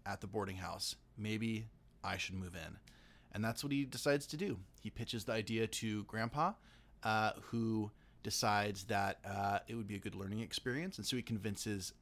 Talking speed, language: 190 wpm, English